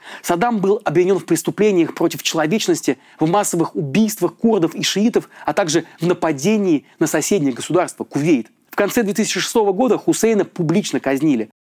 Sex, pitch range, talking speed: male, 170-215 Hz, 145 wpm